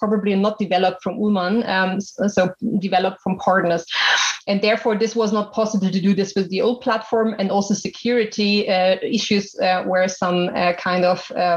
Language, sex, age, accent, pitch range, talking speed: English, female, 30-49, German, 190-220 Hz, 175 wpm